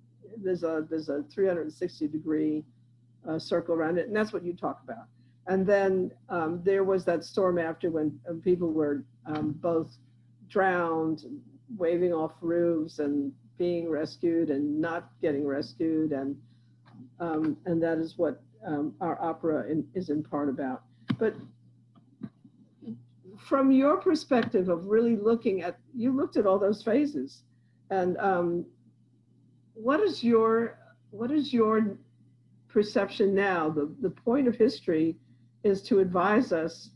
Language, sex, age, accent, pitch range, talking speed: English, female, 50-69, American, 140-195 Hz, 140 wpm